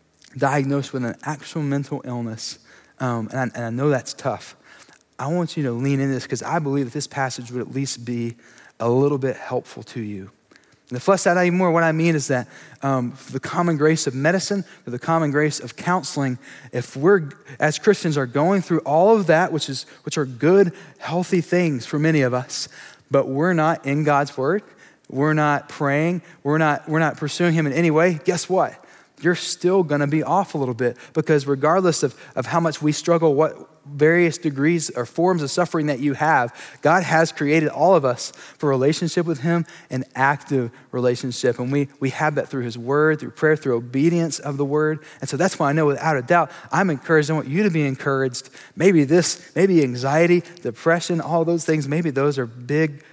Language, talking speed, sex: English, 205 wpm, male